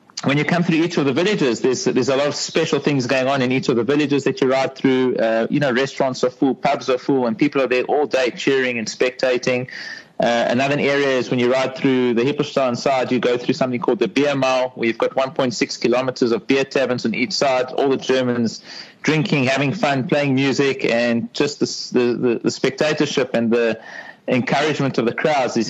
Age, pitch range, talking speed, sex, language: 30-49, 125-145 Hz, 220 wpm, male, English